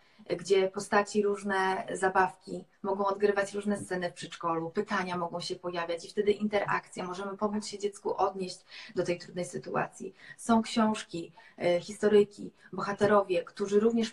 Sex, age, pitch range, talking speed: female, 20-39, 200-225 Hz, 135 wpm